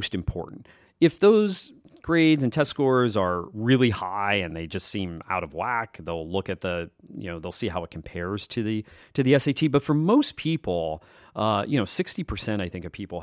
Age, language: 30-49, English